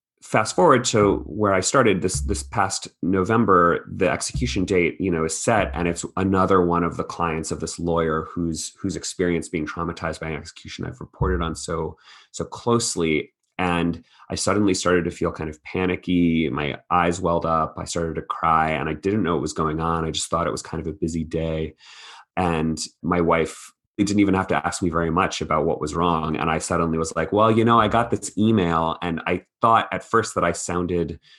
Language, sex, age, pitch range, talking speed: English, male, 30-49, 80-95 Hz, 210 wpm